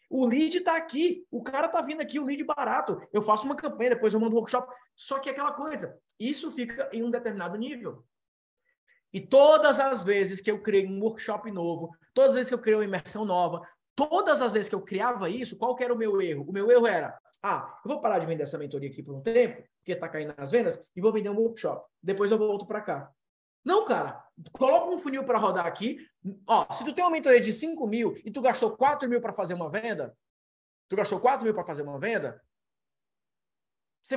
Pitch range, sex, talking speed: 200-270 Hz, male, 225 wpm